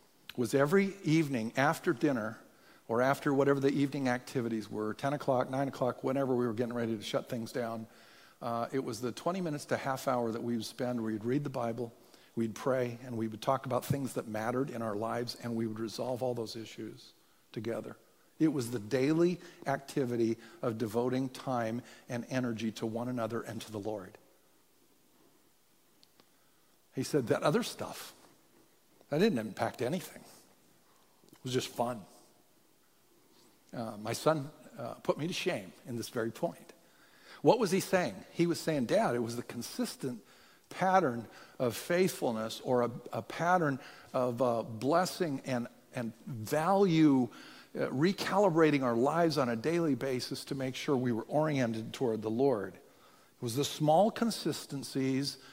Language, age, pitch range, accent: English, 50-69, 115-145 Hz, American